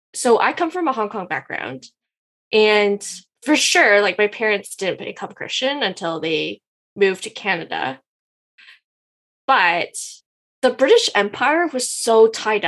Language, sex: English, female